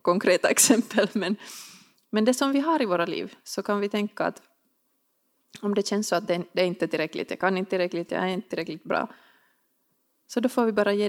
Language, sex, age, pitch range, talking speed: Finnish, female, 20-39, 180-230 Hz, 215 wpm